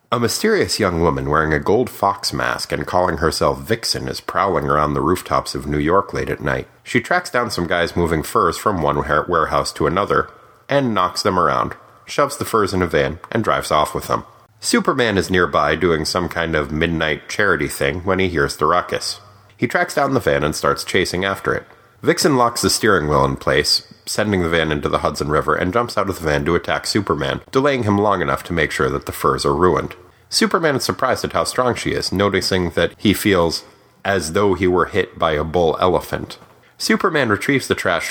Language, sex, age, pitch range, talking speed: English, male, 30-49, 85-130 Hz, 215 wpm